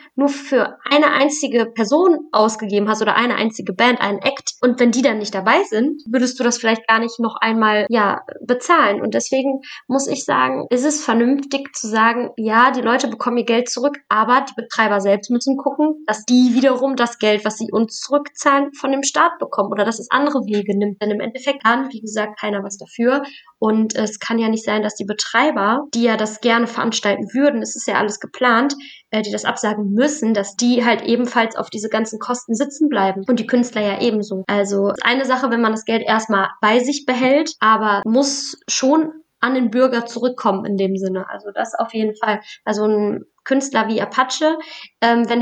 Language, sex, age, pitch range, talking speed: German, female, 20-39, 215-265 Hz, 205 wpm